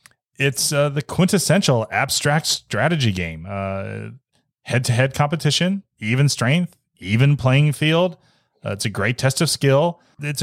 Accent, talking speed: American, 145 wpm